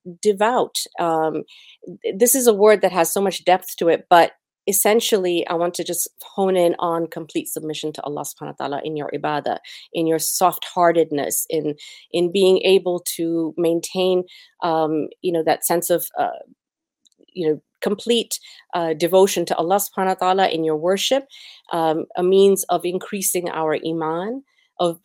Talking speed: 165 wpm